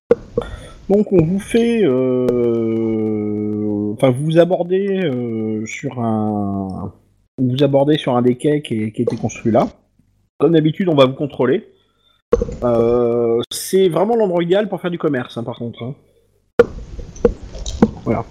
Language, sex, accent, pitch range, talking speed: French, male, French, 120-180 Hz, 140 wpm